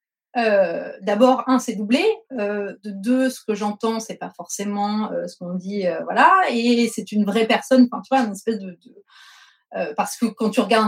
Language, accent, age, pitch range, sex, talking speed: French, French, 30-49, 195-250 Hz, female, 205 wpm